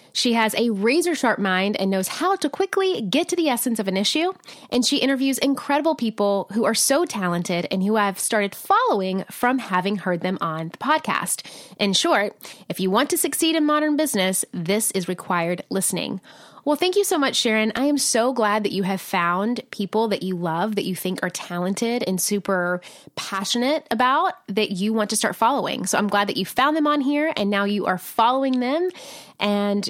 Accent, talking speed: American, 205 wpm